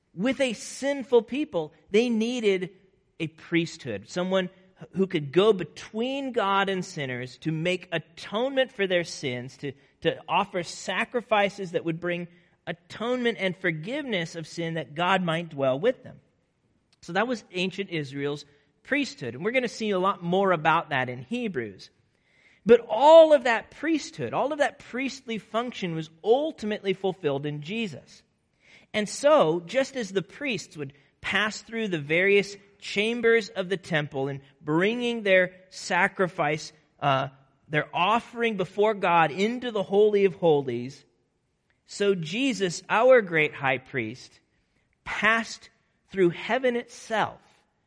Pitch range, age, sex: 160-225 Hz, 40-59, male